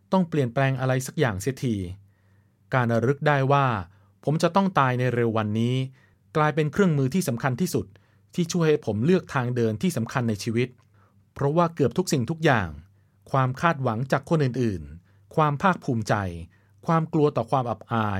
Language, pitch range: Thai, 100-150 Hz